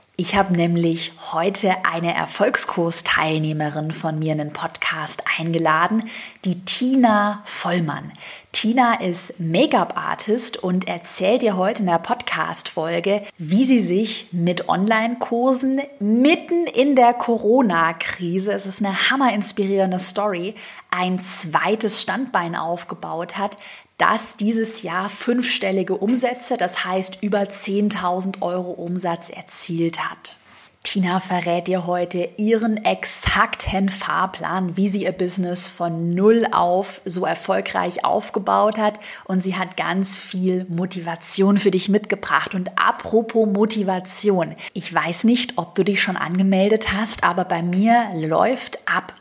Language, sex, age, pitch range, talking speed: German, female, 20-39, 180-220 Hz, 125 wpm